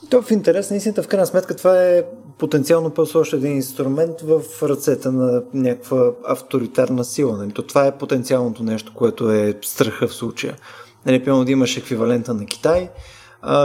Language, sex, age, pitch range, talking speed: Bulgarian, male, 20-39, 115-135 Hz, 170 wpm